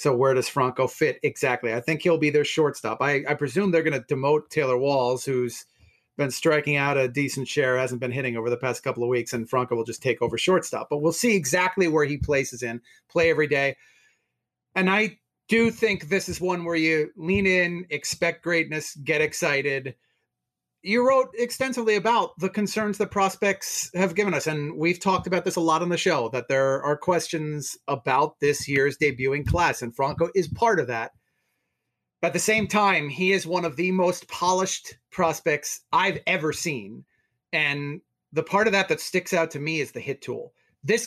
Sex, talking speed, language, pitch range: male, 200 wpm, English, 140-185 Hz